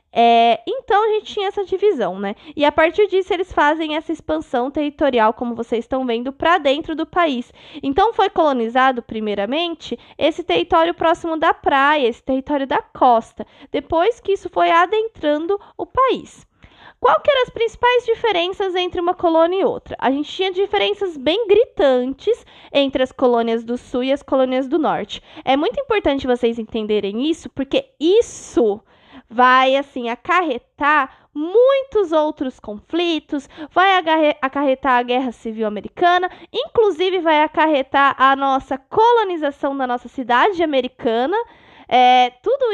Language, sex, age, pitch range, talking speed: Portuguese, female, 20-39, 260-370 Hz, 145 wpm